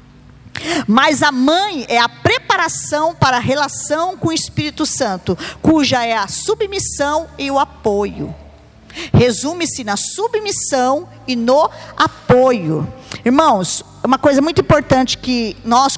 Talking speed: 125 wpm